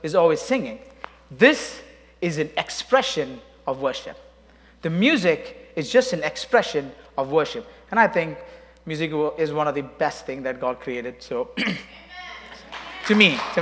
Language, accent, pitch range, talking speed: English, Indian, 145-200 Hz, 150 wpm